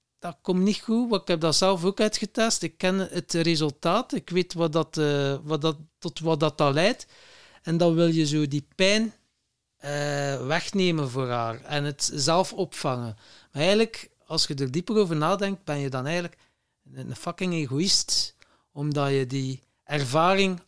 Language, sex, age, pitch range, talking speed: Dutch, male, 60-79, 150-205 Hz, 160 wpm